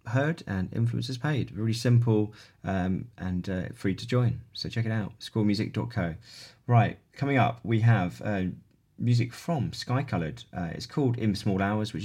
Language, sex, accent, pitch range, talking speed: English, male, British, 95-115 Hz, 170 wpm